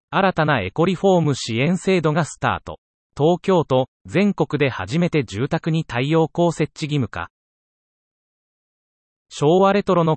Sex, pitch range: male, 115-175 Hz